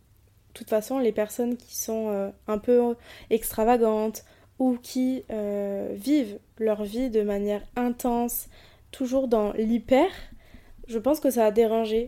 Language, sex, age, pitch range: French, female, 20-39, 210-245 Hz